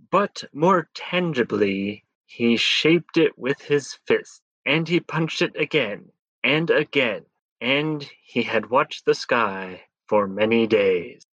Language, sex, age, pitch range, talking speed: English, male, 30-49, 120-165 Hz, 130 wpm